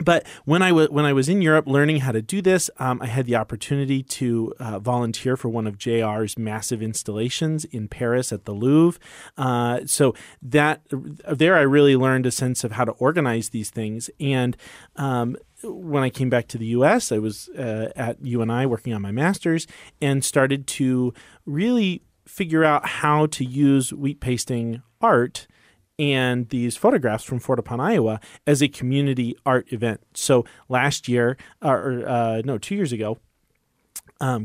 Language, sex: English, male